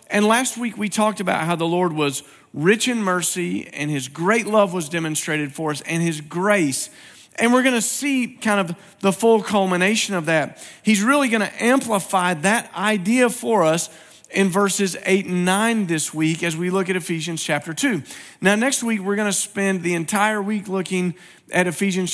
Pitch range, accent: 175-215 Hz, American